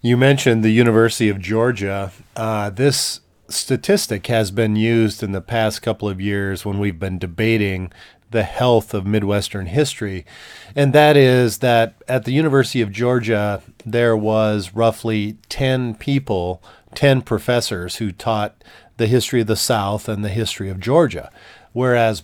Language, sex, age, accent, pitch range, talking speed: English, male, 40-59, American, 100-125 Hz, 150 wpm